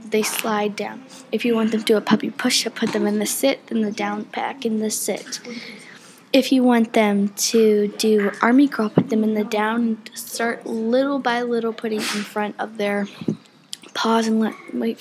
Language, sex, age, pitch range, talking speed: English, female, 10-29, 215-240 Hz, 195 wpm